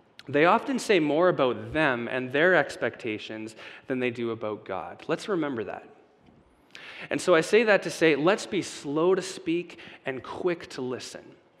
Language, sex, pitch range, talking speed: English, male, 135-190 Hz, 170 wpm